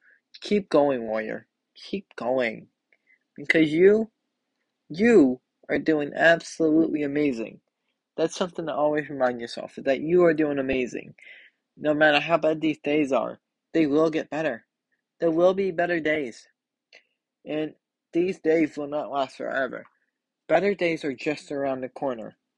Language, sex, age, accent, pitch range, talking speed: English, male, 20-39, American, 145-170 Hz, 140 wpm